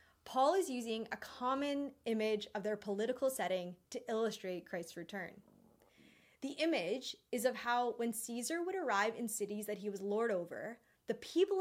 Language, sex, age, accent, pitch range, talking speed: English, female, 20-39, American, 205-275 Hz, 165 wpm